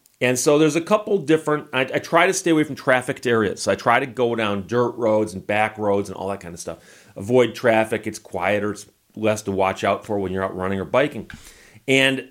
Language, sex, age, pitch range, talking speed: English, male, 30-49, 105-150 Hz, 235 wpm